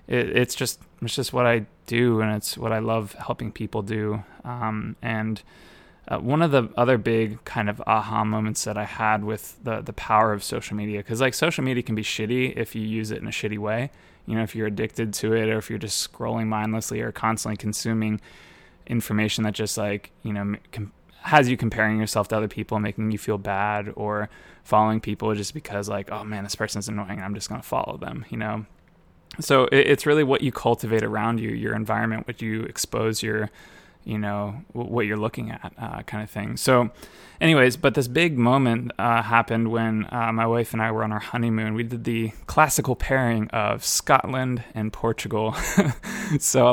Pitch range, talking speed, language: 105-120 Hz, 205 wpm, English